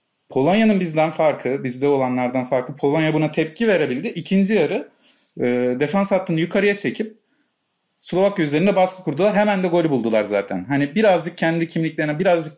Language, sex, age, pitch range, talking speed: Turkish, male, 40-59, 135-190 Hz, 150 wpm